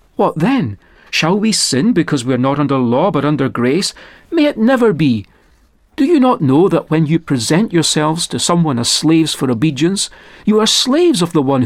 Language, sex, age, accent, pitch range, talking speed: English, male, 40-59, British, 140-210 Hz, 200 wpm